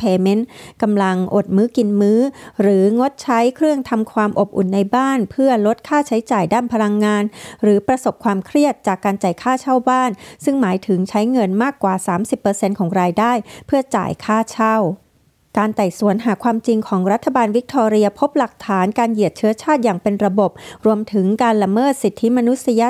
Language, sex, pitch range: Thai, female, 195-240 Hz